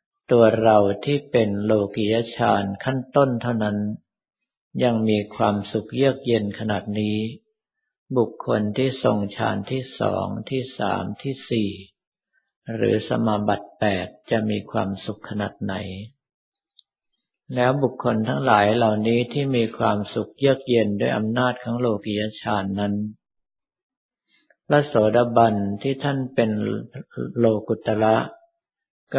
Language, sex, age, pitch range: Thai, male, 50-69, 105-125 Hz